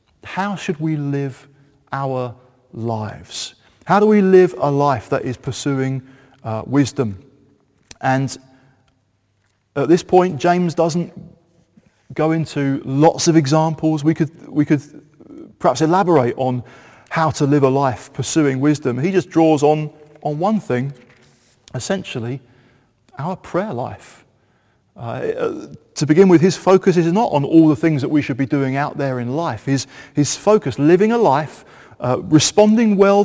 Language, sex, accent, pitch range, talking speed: English, male, British, 130-180 Hz, 150 wpm